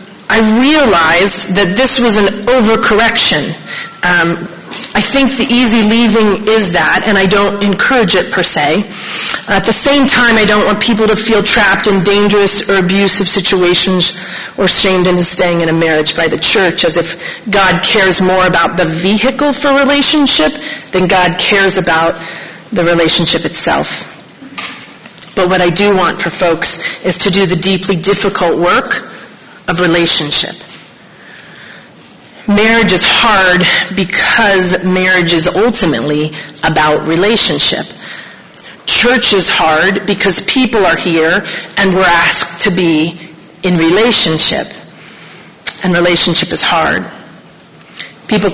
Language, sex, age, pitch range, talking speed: English, female, 30-49, 175-215 Hz, 135 wpm